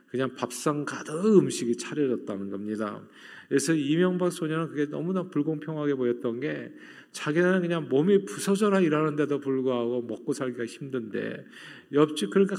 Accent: native